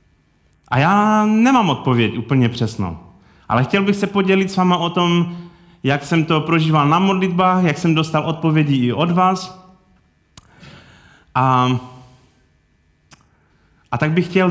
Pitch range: 110-180 Hz